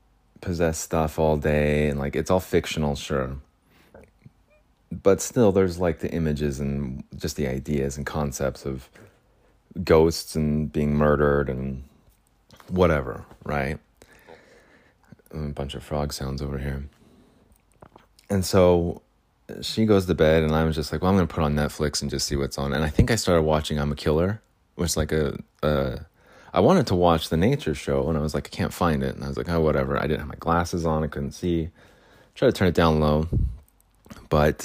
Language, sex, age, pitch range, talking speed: English, male, 30-49, 70-85 Hz, 190 wpm